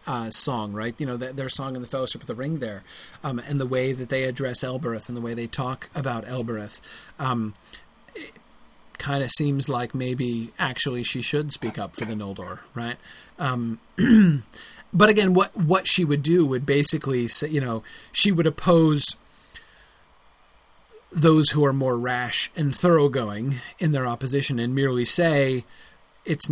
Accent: American